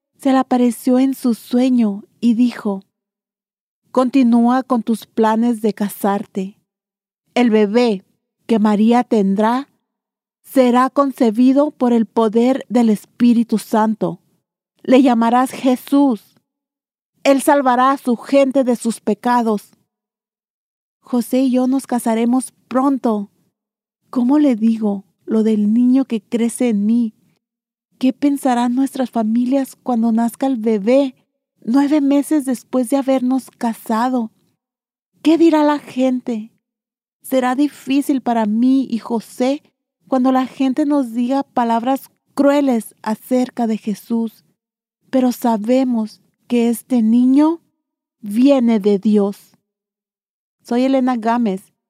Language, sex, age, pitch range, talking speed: English, female, 40-59, 220-260 Hz, 115 wpm